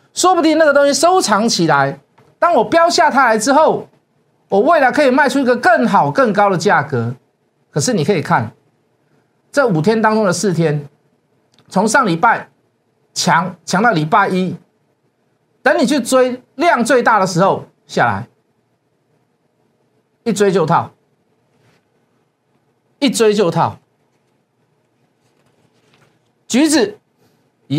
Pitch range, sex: 160-265 Hz, male